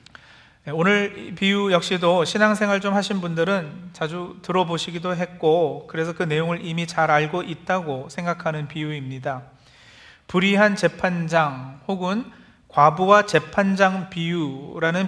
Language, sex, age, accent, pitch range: Korean, male, 40-59, native, 155-200 Hz